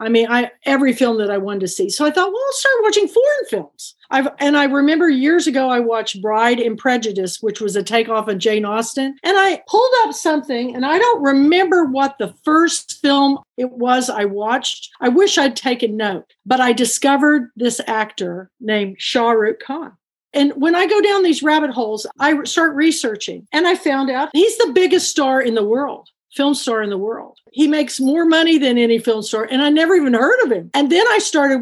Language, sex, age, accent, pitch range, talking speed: English, female, 50-69, American, 225-305 Hz, 215 wpm